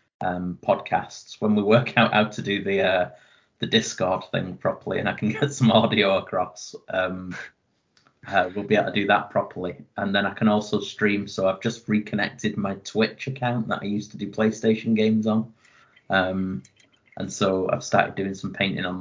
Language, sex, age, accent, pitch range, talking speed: English, male, 30-49, British, 105-125 Hz, 195 wpm